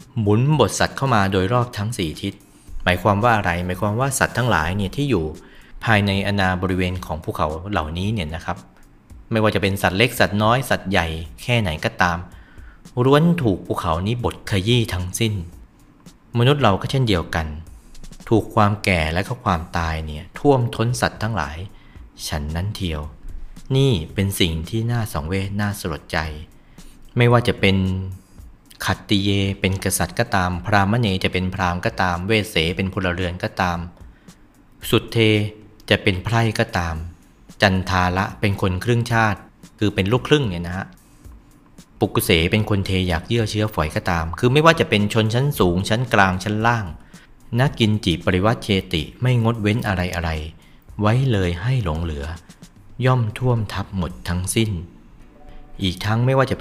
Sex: male